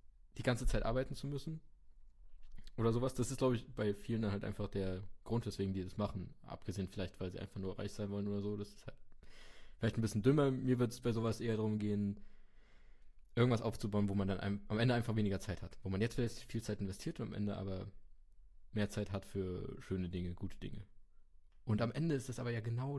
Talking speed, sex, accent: 225 wpm, male, German